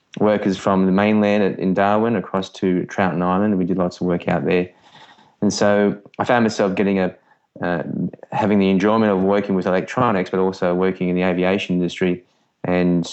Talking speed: 185 wpm